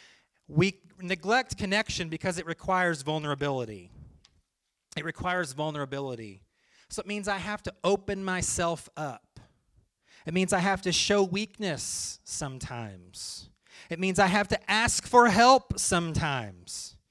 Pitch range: 160-230 Hz